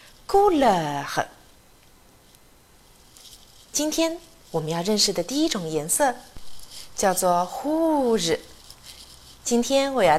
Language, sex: Chinese, female